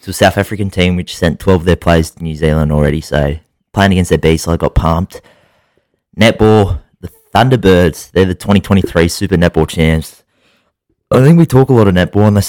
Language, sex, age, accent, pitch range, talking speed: English, male, 20-39, Australian, 80-95 Hz, 200 wpm